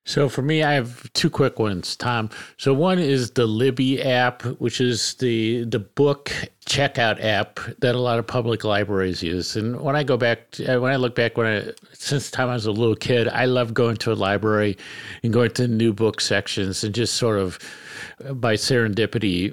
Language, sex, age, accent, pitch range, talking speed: English, male, 50-69, American, 105-125 Hz, 205 wpm